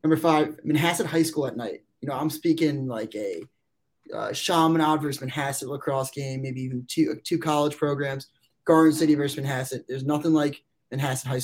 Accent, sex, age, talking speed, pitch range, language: American, male, 20-39, 180 wpm, 130-160 Hz, English